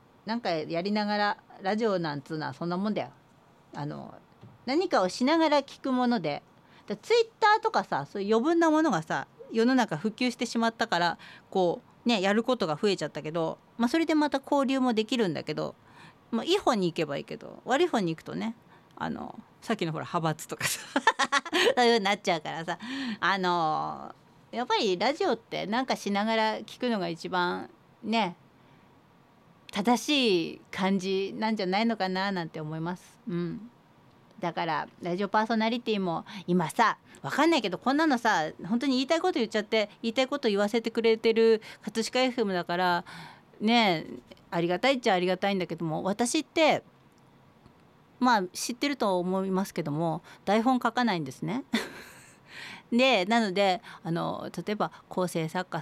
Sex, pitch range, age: female, 180-250 Hz, 40-59